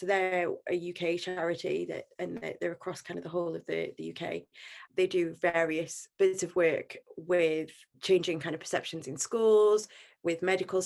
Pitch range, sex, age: 160-185 Hz, female, 20-39